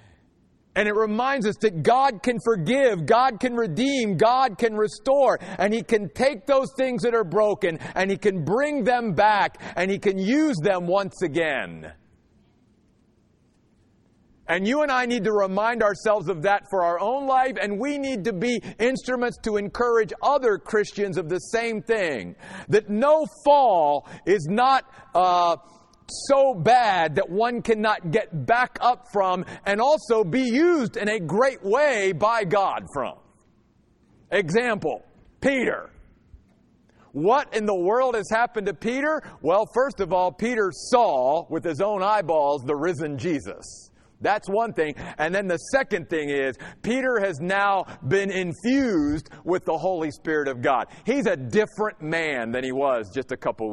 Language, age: English, 50-69